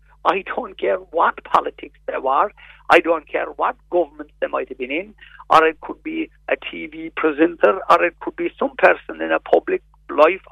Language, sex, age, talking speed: English, male, 60-79, 195 wpm